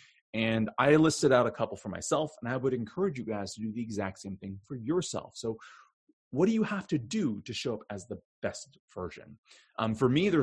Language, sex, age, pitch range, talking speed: English, male, 30-49, 95-125 Hz, 230 wpm